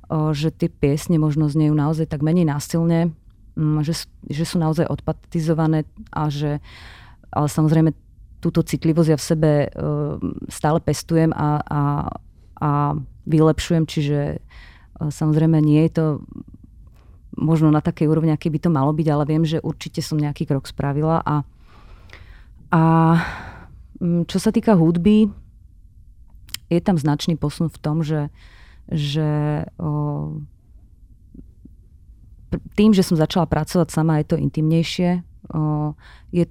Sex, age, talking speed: female, 30-49, 125 wpm